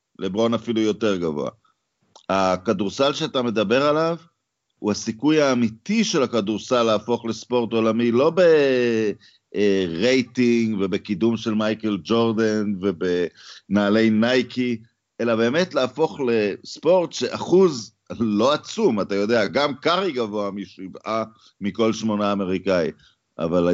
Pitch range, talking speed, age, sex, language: 100-125 Hz, 105 wpm, 50-69, male, Hebrew